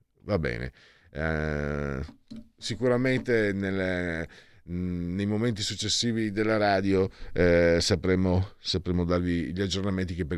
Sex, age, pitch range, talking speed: male, 50-69, 95-140 Hz, 105 wpm